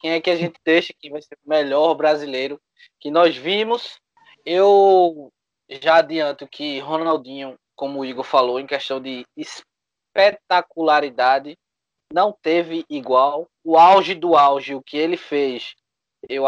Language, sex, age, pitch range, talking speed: Portuguese, male, 20-39, 140-180 Hz, 145 wpm